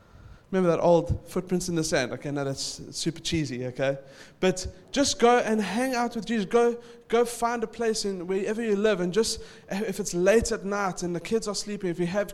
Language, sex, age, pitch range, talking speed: English, male, 20-39, 155-205 Hz, 220 wpm